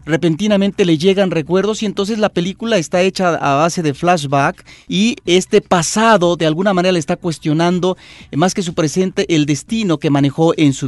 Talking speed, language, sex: 180 wpm, Spanish, male